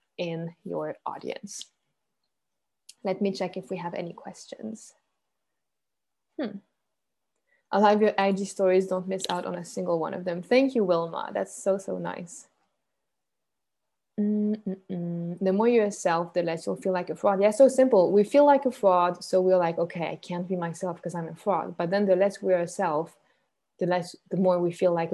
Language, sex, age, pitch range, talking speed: English, female, 20-39, 175-210 Hz, 190 wpm